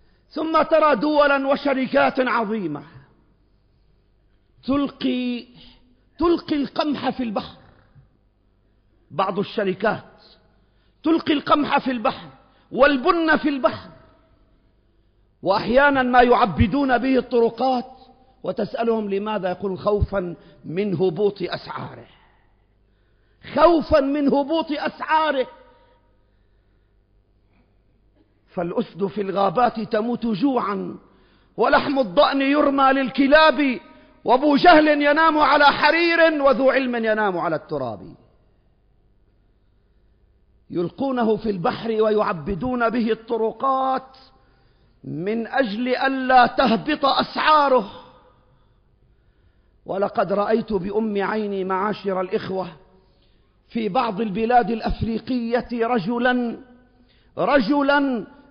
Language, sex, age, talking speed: Arabic, male, 50-69, 80 wpm